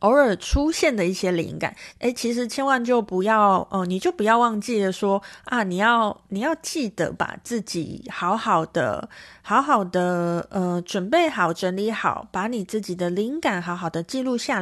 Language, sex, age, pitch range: Chinese, female, 30-49, 180-255 Hz